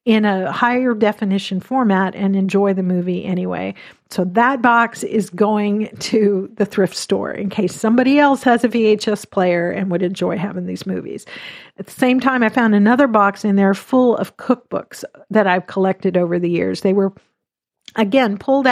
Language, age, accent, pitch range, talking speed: English, 50-69, American, 195-240 Hz, 180 wpm